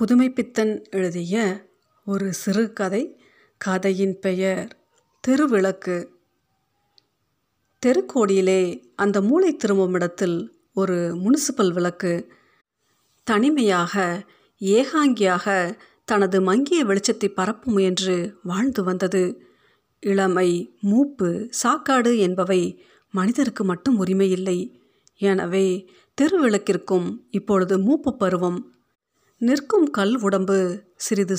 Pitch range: 185-245 Hz